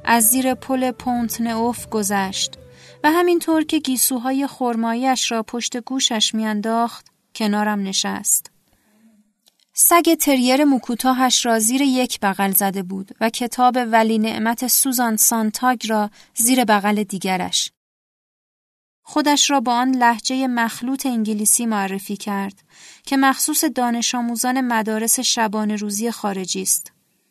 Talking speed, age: 115 wpm, 30-49